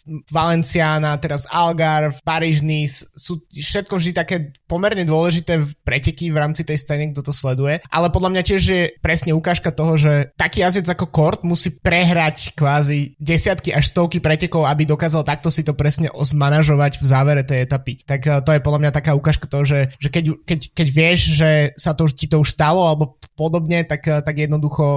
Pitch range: 145-160 Hz